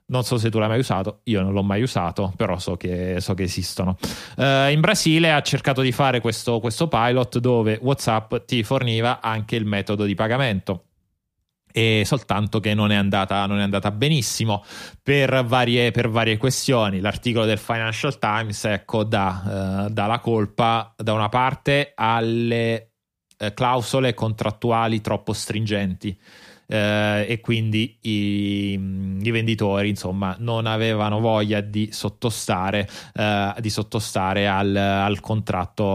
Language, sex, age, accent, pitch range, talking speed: Italian, male, 30-49, native, 100-120 Hz, 140 wpm